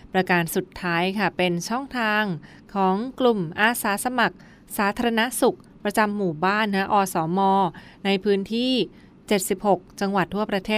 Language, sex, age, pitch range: Thai, female, 20-39, 175-210 Hz